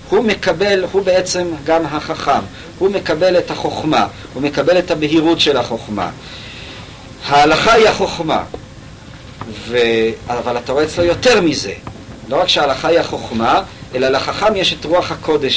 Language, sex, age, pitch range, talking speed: Hebrew, male, 50-69, 145-185 Hz, 145 wpm